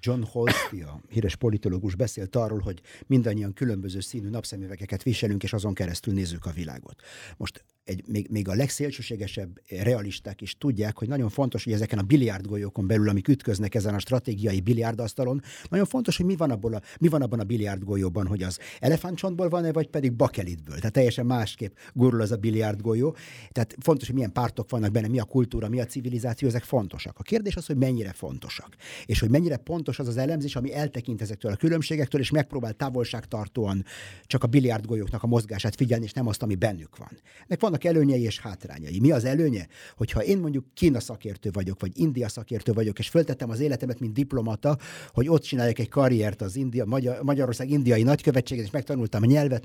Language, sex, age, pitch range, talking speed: Hungarian, male, 50-69, 105-140 Hz, 180 wpm